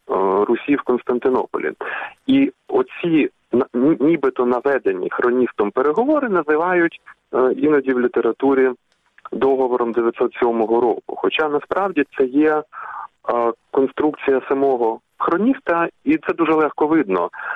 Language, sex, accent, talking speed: Ukrainian, male, native, 95 wpm